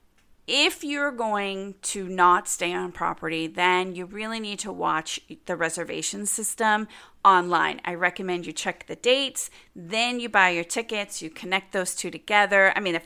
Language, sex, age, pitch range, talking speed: English, female, 30-49, 165-195 Hz, 170 wpm